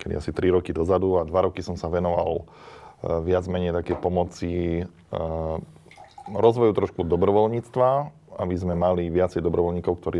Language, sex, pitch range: Slovak, male, 80-90 Hz